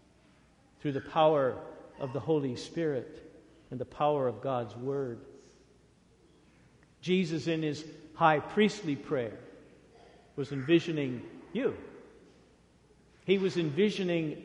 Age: 50-69